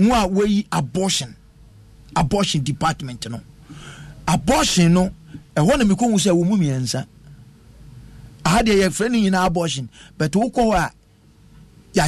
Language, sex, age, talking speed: English, male, 50-69, 115 wpm